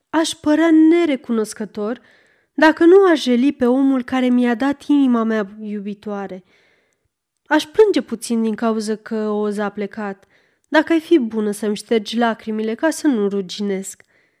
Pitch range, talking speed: 210-295 Hz, 145 wpm